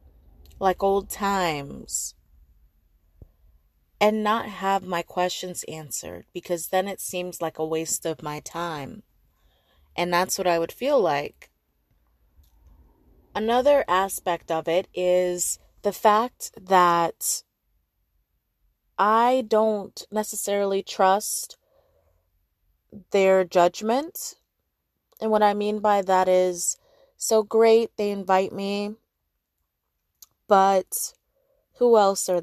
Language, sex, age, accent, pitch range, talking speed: English, female, 20-39, American, 160-205 Hz, 105 wpm